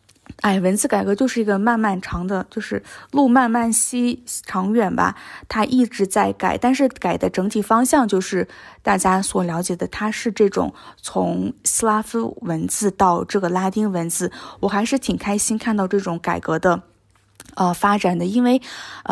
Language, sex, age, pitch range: Chinese, female, 20-39, 190-245 Hz